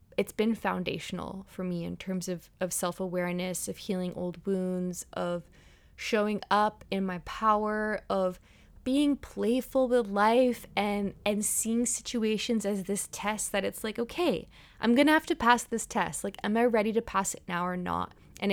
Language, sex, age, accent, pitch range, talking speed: English, female, 20-39, American, 190-235 Hz, 175 wpm